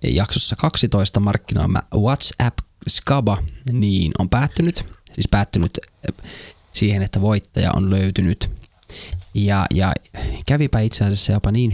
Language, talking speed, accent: Finnish, 115 wpm, native